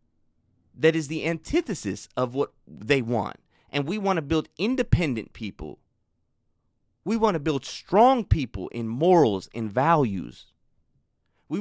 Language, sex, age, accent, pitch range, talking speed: English, male, 30-49, American, 125-185 Hz, 135 wpm